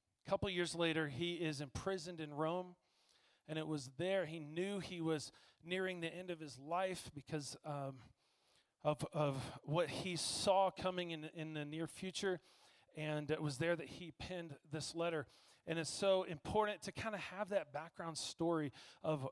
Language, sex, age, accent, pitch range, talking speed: English, male, 40-59, American, 145-175 Hz, 175 wpm